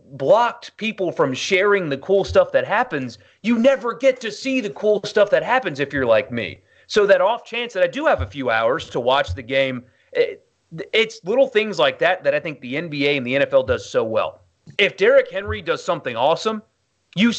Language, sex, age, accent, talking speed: English, male, 30-49, American, 210 wpm